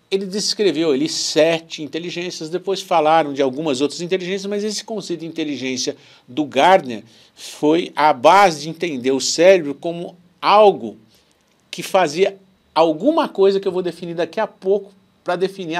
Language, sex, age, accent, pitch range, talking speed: Portuguese, male, 60-79, Brazilian, 150-195 Hz, 150 wpm